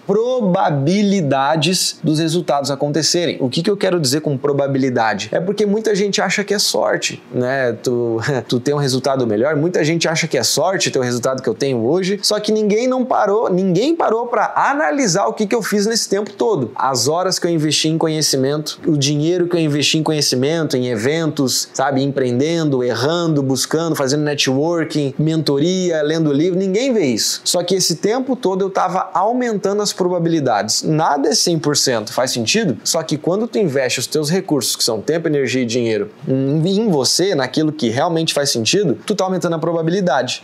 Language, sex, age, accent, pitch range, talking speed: Portuguese, male, 20-39, Brazilian, 140-185 Hz, 185 wpm